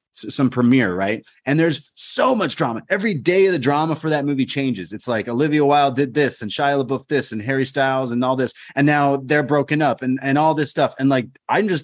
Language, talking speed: English, 235 wpm